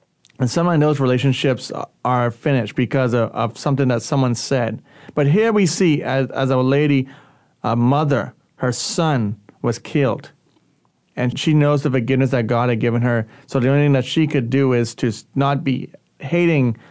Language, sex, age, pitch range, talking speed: English, male, 30-49, 125-150 Hz, 180 wpm